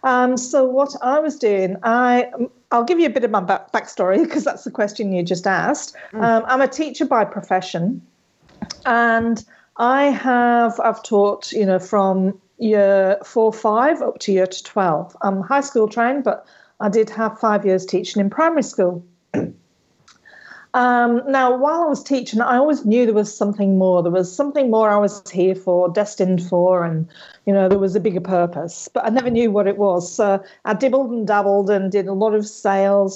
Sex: female